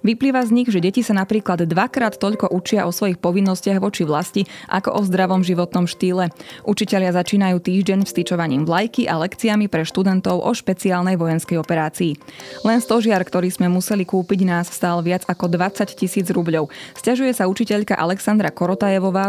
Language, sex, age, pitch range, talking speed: Slovak, female, 20-39, 175-205 Hz, 160 wpm